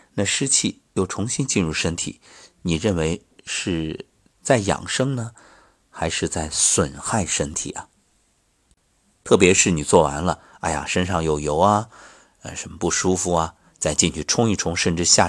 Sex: male